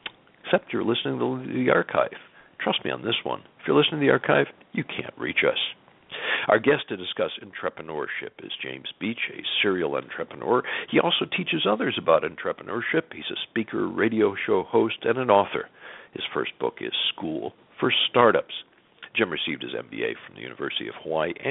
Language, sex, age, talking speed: English, male, 60-79, 175 wpm